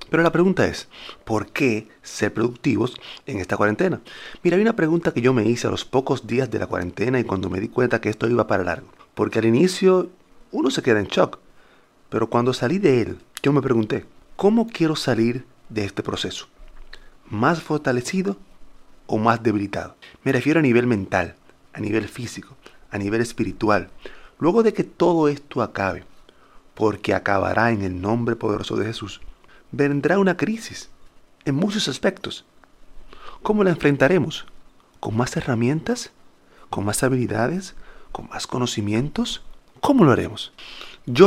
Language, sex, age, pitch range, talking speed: Spanish, male, 30-49, 105-145 Hz, 160 wpm